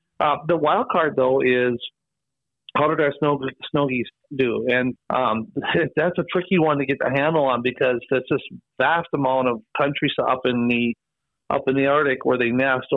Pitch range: 125-145 Hz